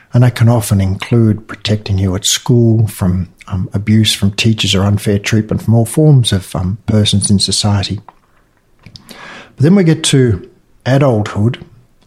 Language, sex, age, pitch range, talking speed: English, male, 60-79, 105-125 Hz, 155 wpm